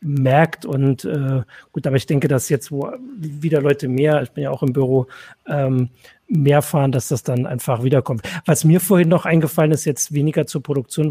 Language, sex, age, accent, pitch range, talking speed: German, male, 40-59, German, 140-165 Hz, 200 wpm